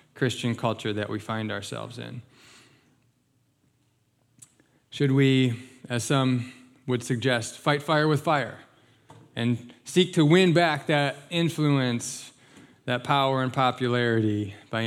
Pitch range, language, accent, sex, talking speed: 120-145 Hz, English, American, male, 115 wpm